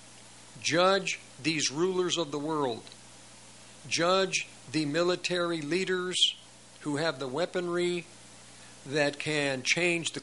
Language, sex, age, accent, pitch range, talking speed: English, male, 50-69, American, 130-175 Hz, 105 wpm